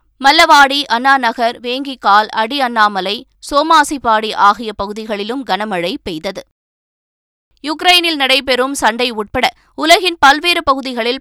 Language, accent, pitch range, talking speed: Tamil, native, 210-275 Hz, 95 wpm